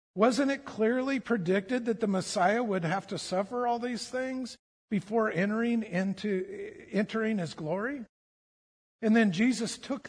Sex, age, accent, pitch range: male, 50-69, American, 175-220 Hz